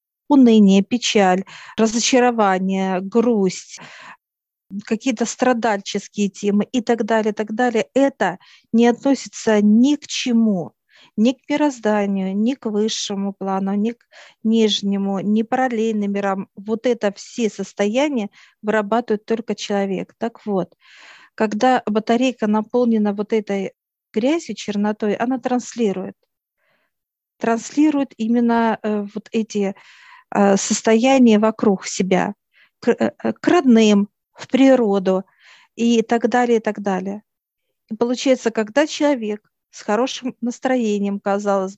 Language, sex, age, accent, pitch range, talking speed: Russian, female, 50-69, native, 205-245 Hz, 105 wpm